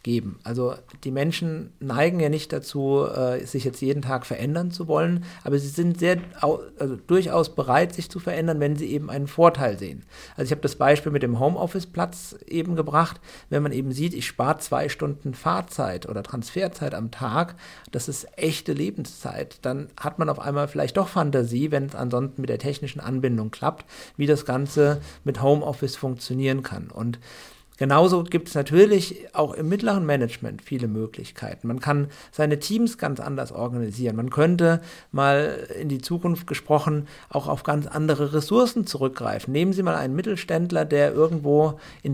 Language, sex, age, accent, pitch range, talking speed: German, male, 50-69, German, 135-170 Hz, 170 wpm